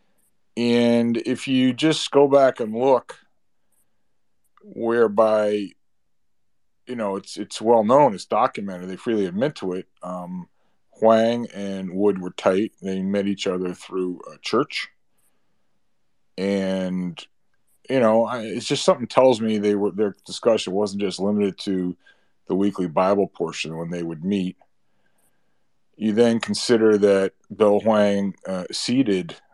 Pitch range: 95-120 Hz